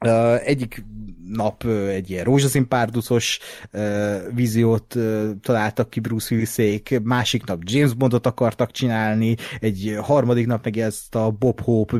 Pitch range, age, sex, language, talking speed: 110-130 Hz, 30-49, male, Hungarian, 135 wpm